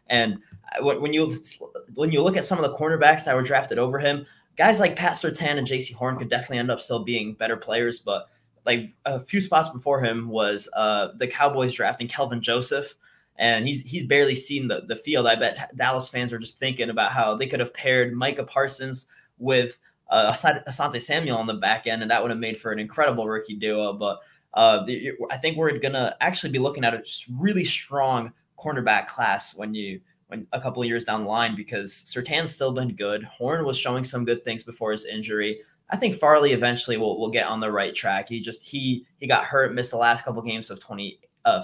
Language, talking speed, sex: English, 220 wpm, male